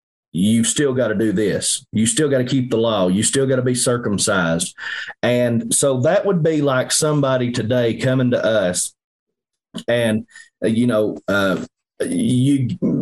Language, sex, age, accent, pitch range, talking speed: English, male, 30-49, American, 110-130 Hz, 170 wpm